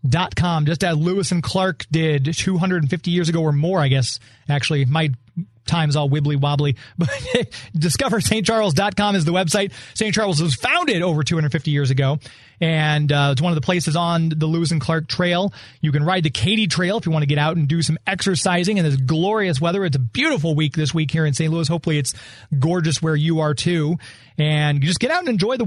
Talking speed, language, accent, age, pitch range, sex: 210 wpm, English, American, 30-49, 155-200 Hz, male